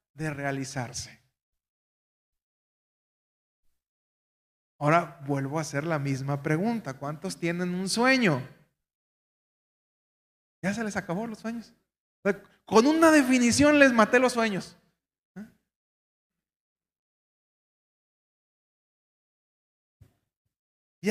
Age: 40-59